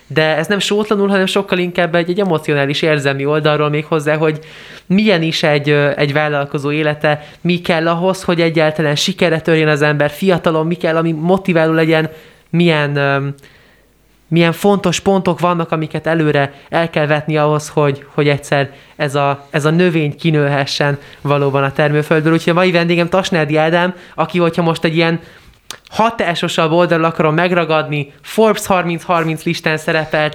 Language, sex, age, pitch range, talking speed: Hungarian, male, 20-39, 150-170 Hz, 155 wpm